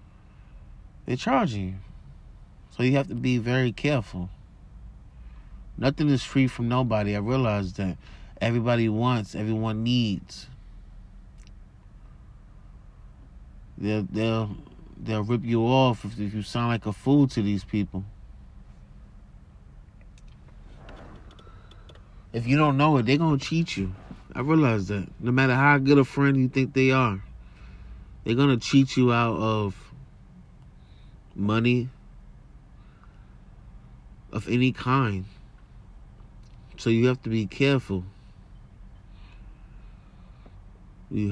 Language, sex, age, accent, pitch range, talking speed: English, male, 30-49, American, 95-125 Hz, 115 wpm